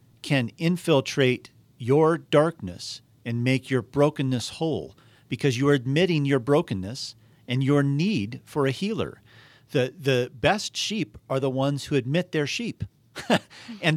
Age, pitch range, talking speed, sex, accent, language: 50-69, 115-150 Hz, 140 wpm, male, American, English